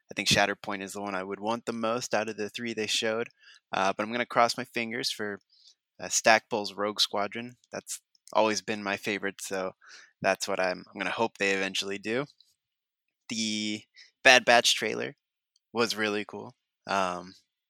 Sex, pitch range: male, 100-110 Hz